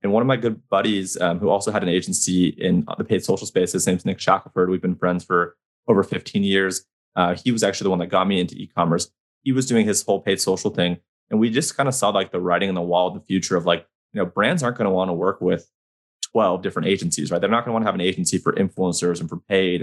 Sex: male